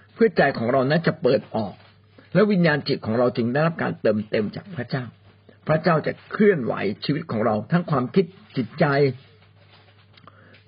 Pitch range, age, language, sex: 110-165 Hz, 60-79, Thai, male